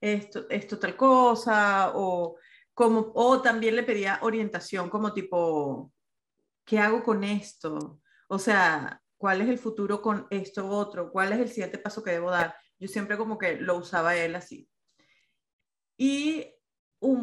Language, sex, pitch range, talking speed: Spanish, female, 195-245 Hz, 155 wpm